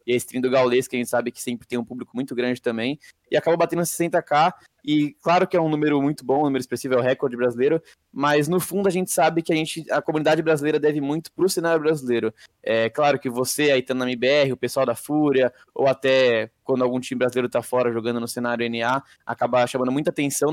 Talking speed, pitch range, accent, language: 240 wpm, 125-155 Hz, Brazilian, Portuguese